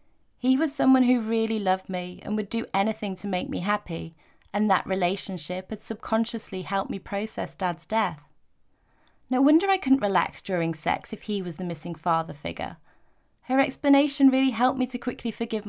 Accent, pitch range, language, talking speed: British, 190-245 Hz, English, 180 wpm